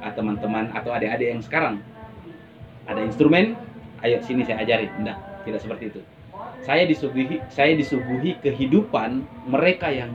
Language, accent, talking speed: Indonesian, native, 130 wpm